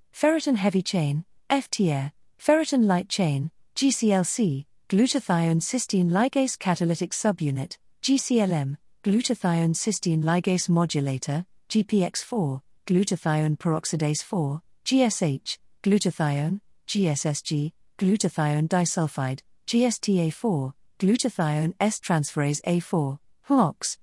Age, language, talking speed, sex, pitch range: 50-69, English, 80 wpm, female, 155-220 Hz